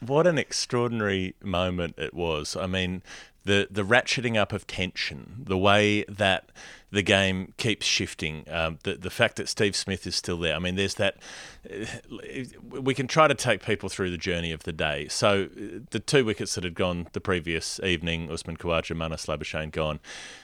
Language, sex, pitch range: English, male, 80-95 Hz